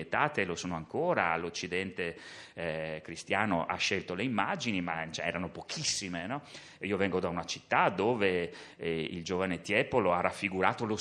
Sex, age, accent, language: male, 30-49, native, Italian